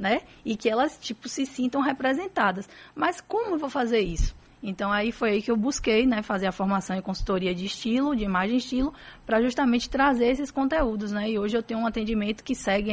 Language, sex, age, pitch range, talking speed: Portuguese, female, 20-39, 195-250 Hz, 220 wpm